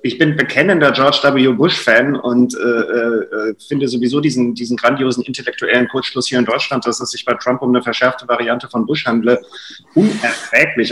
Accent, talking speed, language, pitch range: German, 175 wpm, German, 130-170 Hz